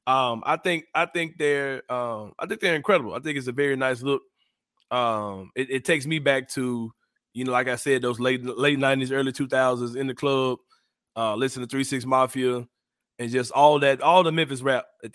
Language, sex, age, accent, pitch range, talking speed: English, male, 20-39, American, 120-150 Hz, 215 wpm